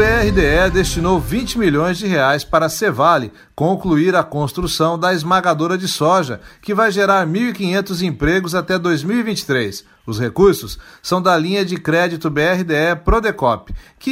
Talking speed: 145 wpm